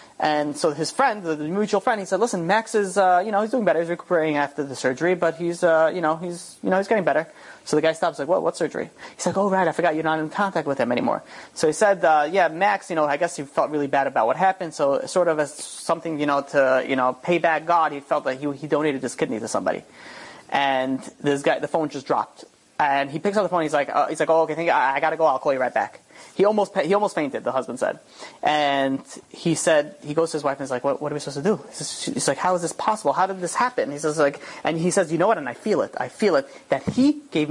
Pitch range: 140-185 Hz